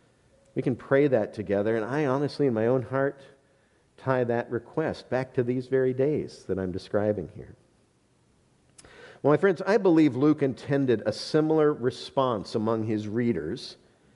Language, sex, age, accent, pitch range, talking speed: English, male, 50-69, American, 115-150 Hz, 155 wpm